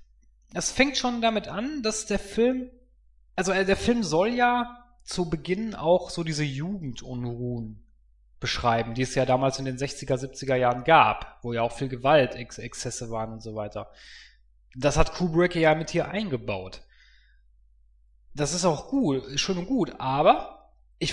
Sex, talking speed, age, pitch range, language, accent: male, 160 wpm, 30-49, 125-190 Hz, German, German